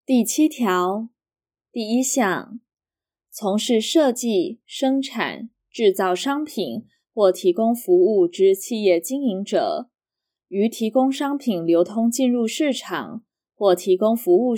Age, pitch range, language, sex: 20-39, 185-260 Hz, Chinese, female